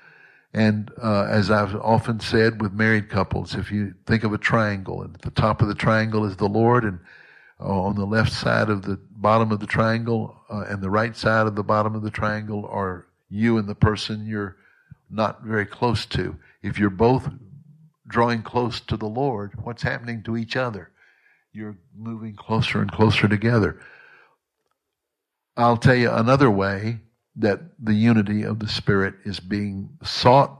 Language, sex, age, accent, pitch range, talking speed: English, male, 60-79, American, 100-115 Hz, 180 wpm